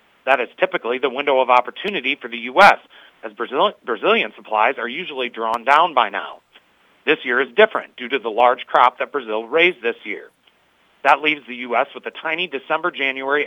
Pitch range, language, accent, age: 125-160 Hz, English, American, 40-59